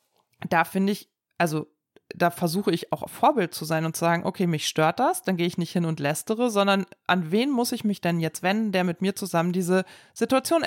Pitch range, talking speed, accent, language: 170-220 Hz, 225 wpm, German, German